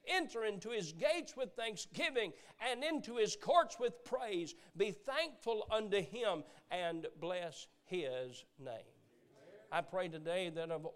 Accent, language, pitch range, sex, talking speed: American, English, 175-225 Hz, male, 135 wpm